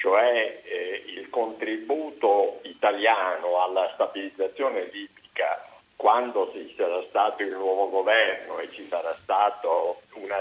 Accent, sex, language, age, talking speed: native, male, Italian, 50-69, 115 wpm